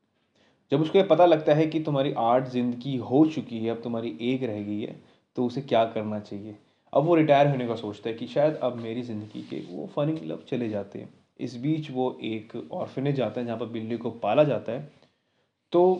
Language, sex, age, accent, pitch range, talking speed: Hindi, male, 20-39, native, 120-150 Hz, 220 wpm